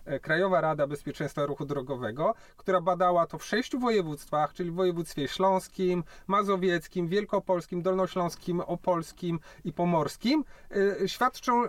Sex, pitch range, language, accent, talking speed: male, 160-200 Hz, Polish, native, 115 wpm